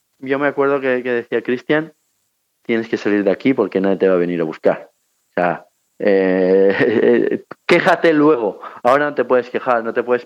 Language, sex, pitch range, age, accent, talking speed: Spanish, male, 115-150 Hz, 30-49, Spanish, 195 wpm